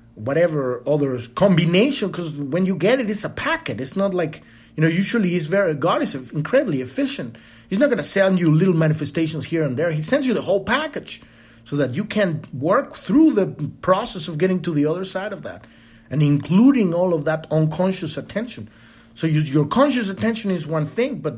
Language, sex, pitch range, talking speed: English, male, 130-185 Hz, 200 wpm